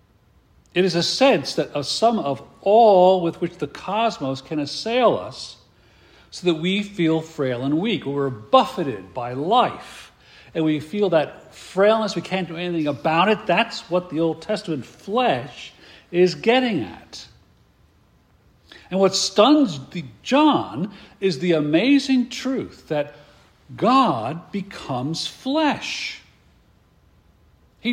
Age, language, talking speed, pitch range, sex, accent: 50-69, English, 130 wpm, 150-230 Hz, male, American